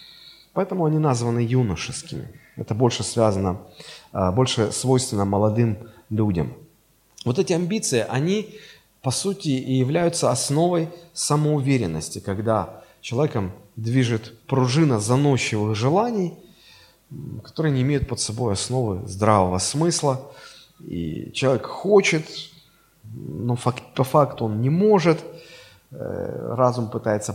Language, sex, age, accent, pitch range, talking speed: Russian, male, 30-49, native, 110-155 Hz, 100 wpm